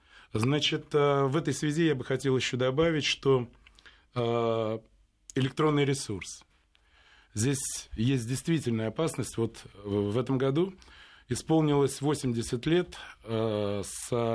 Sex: male